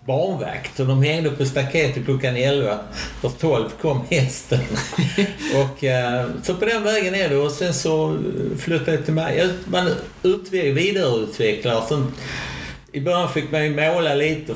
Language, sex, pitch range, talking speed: Swedish, male, 130-160 Hz, 150 wpm